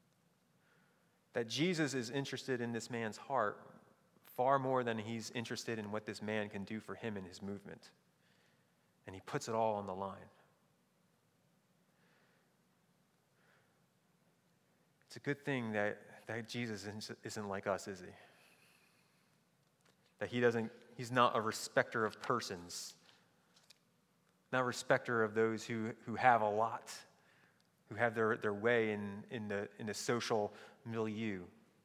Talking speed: 140 wpm